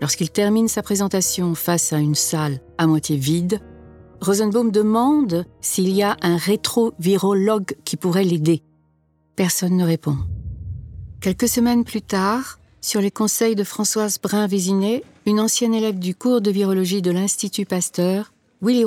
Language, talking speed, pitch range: French, 145 wpm, 170-215 Hz